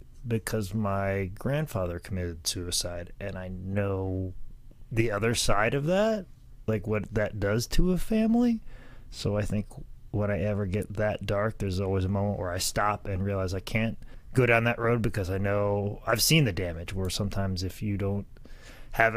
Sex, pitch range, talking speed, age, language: male, 95-115 Hz, 180 wpm, 30-49, English